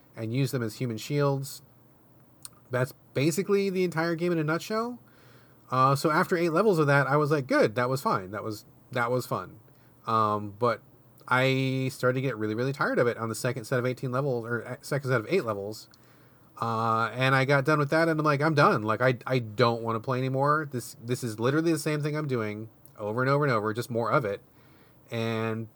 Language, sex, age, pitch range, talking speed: English, male, 30-49, 115-145 Hz, 225 wpm